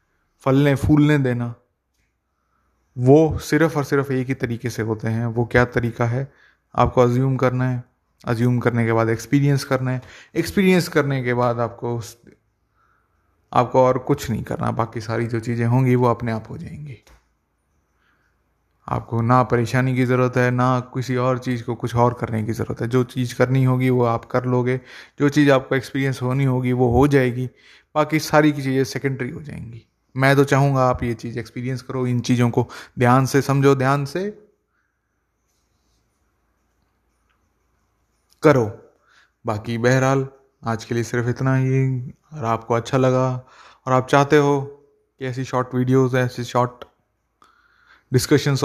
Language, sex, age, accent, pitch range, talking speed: Hindi, male, 30-49, native, 115-135 Hz, 160 wpm